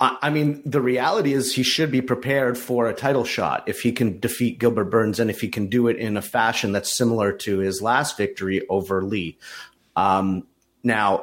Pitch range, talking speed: 100-125 Hz, 205 wpm